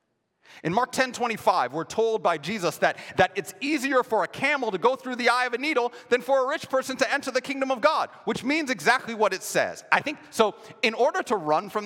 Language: English